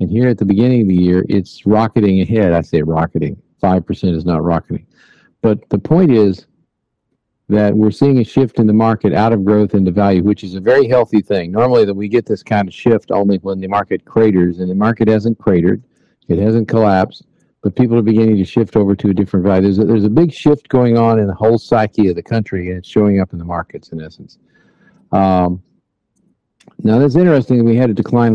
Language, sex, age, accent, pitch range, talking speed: English, male, 50-69, American, 95-115 Hz, 225 wpm